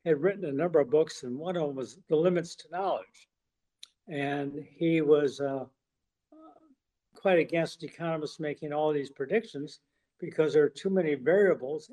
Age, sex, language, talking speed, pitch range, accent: 60-79, male, English, 160 wpm, 140-170 Hz, American